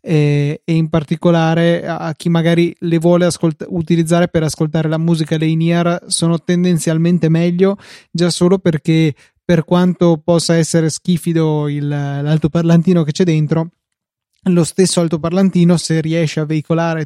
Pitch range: 155-170 Hz